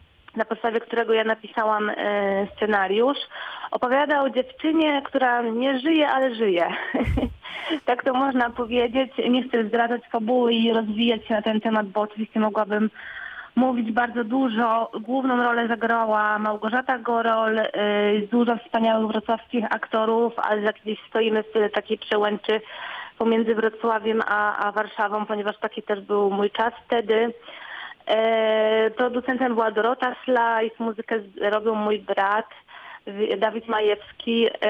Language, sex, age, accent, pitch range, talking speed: Polish, female, 20-39, native, 210-235 Hz, 125 wpm